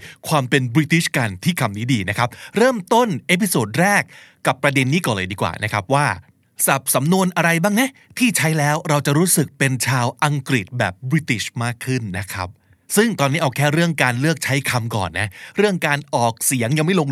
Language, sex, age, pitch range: Thai, male, 20-39, 120-155 Hz